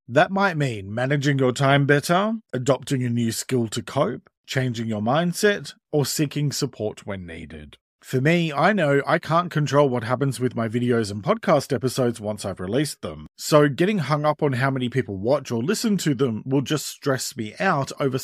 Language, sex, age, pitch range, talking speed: English, male, 40-59, 110-145 Hz, 195 wpm